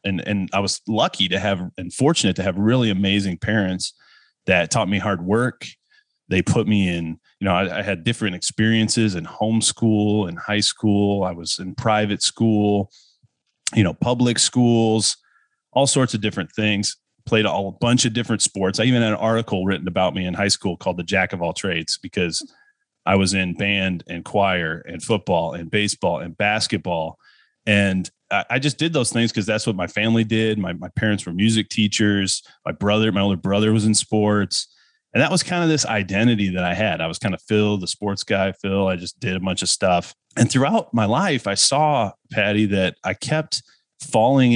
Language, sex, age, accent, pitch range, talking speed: English, male, 30-49, American, 95-115 Hz, 200 wpm